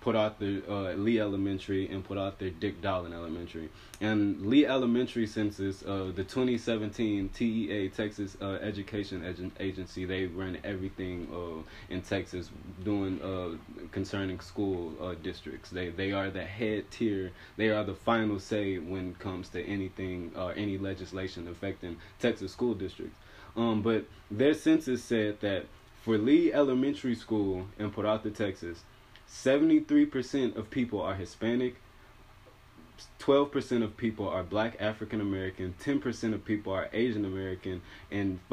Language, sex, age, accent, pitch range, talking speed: English, male, 20-39, American, 95-110 Hz, 145 wpm